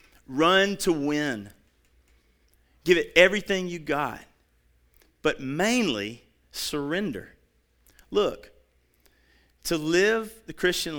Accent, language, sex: American, English, male